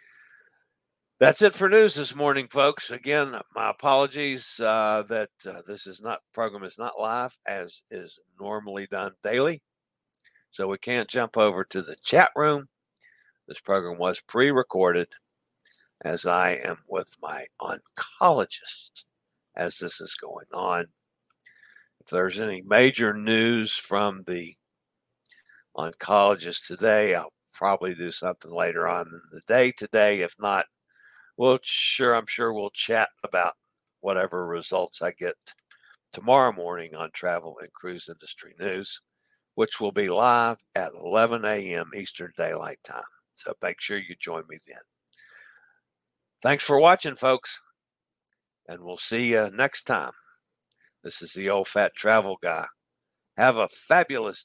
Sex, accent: male, American